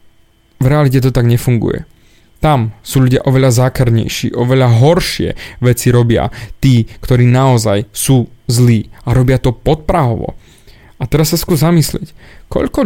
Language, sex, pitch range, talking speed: Slovak, male, 120-160 Hz, 135 wpm